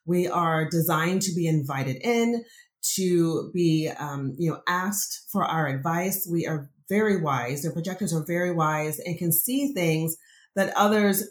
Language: English